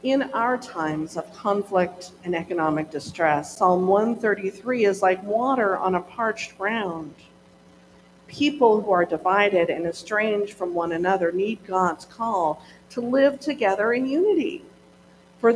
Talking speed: 135 wpm